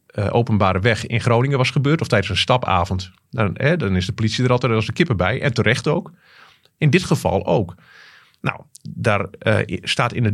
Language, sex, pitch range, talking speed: Dutch, male, 100-130 Hz, 205 wpm